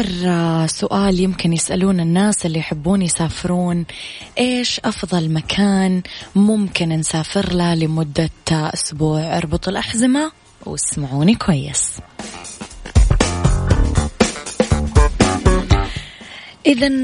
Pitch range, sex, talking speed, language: 155-185 Hz, female, 70 wpm, Arabic